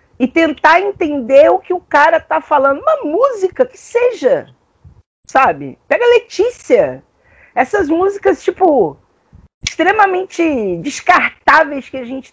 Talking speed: 115 wpm